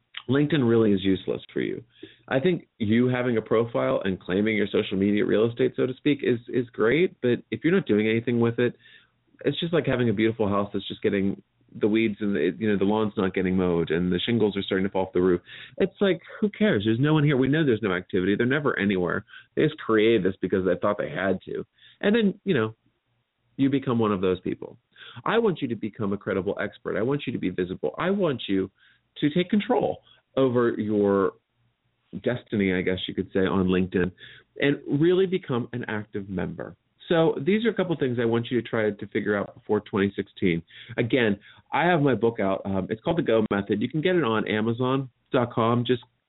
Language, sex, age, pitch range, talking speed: English, male, 30-49, 100-135 Hz, 225 wpm